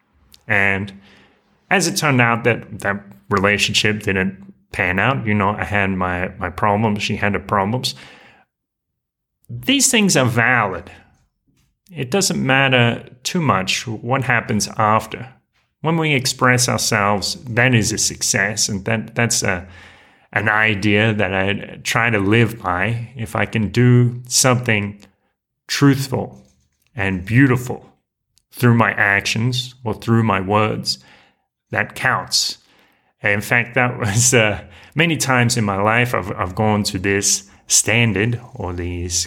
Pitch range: 100-125 Hz